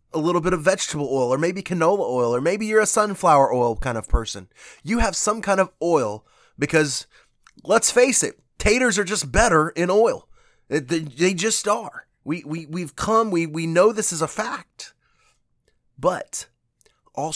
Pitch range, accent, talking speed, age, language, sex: 135-180 Hz, American, 185 wpm, 20-39, English, male